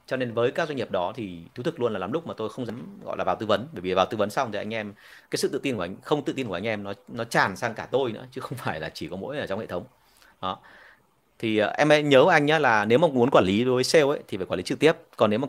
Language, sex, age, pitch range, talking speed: Vietnamese, male, 30-49, 105-150 Hz, 335 wpm